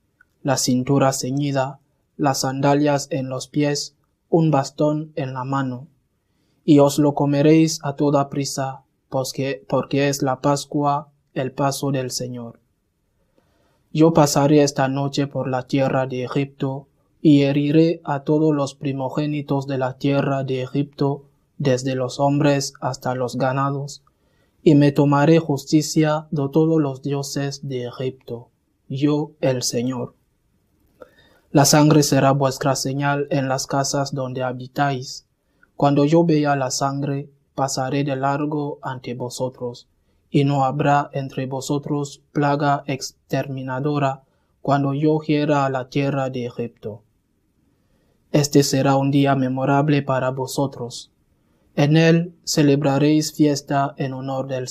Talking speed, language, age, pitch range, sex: 130 wpm, English, 20-39, 130-145 Hz, male